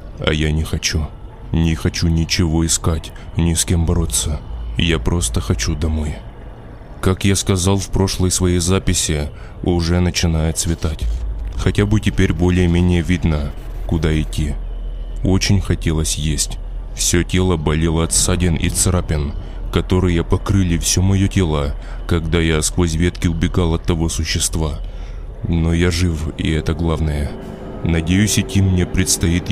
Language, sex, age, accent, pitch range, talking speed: Russian, male, 20-39, native, 80-95 Hz, 130 wpm